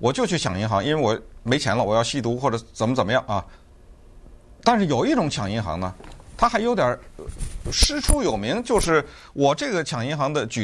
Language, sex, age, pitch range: Chinese, male, 50-69, 115-185 Hz